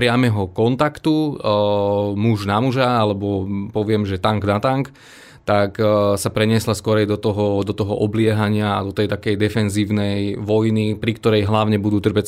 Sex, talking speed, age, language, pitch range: male, 160 wpm, 20-39, Slovak, 105-115 Hz